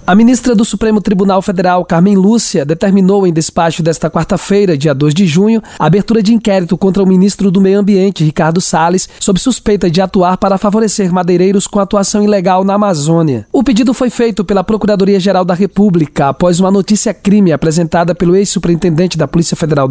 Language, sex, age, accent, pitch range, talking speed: Portuguese, male, 20-39, Brazilian, 180-215 Hz, 180 wpm